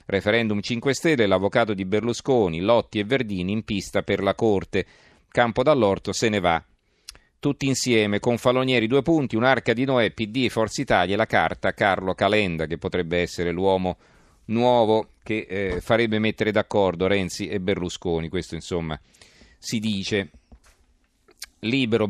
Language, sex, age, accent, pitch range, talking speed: Italian, male, 40-59, native, 95-115 Hz, 150 wpm